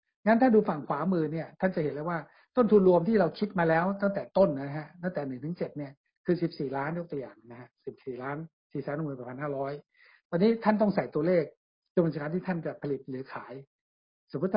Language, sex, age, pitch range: Thai, male, 60-79, 150-200 Hz